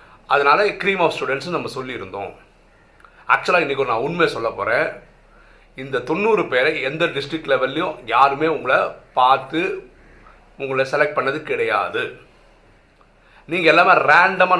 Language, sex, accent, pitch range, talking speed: Tamil, male, native, 155-210 Hz, 120 wpm